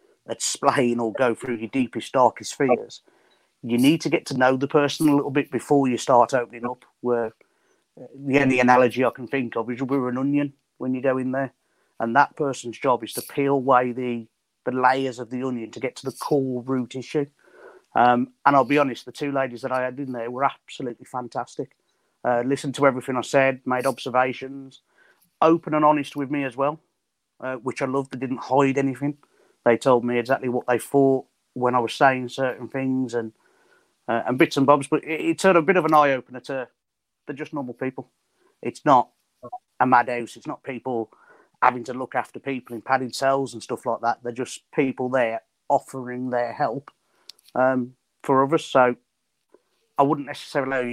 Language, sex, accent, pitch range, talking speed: English, male, British, 125-140 Hz, 200 wpm